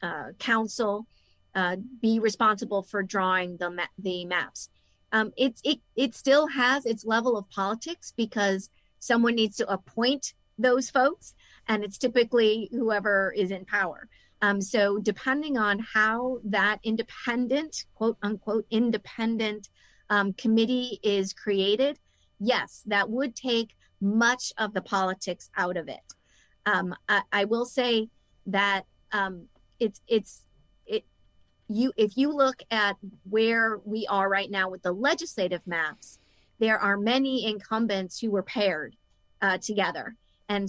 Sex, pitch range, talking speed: female, 200-245 Hz, 135 wpm